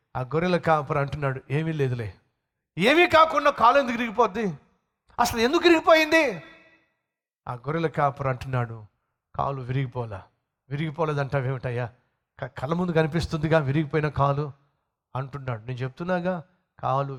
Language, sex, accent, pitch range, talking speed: Telugu, male, native, 130-210 Hz, 105 wpm